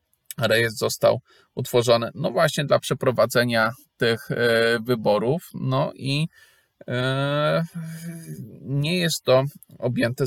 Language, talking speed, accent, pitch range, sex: Polish, 90 wpm, native, 120-140 Hz, male